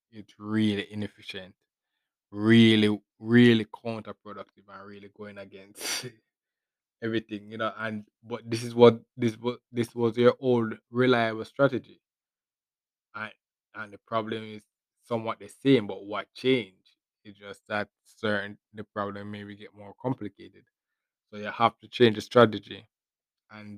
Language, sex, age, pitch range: English, male, 20-39, 100-110 Hz